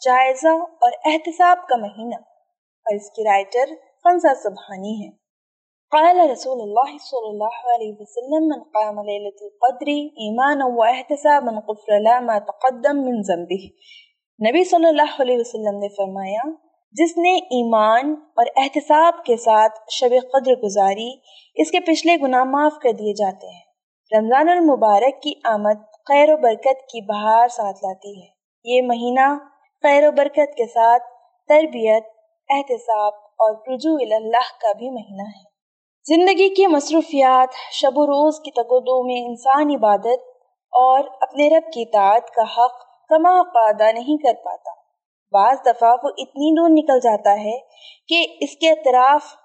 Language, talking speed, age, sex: Urdu, 135 wpm, 20-39, female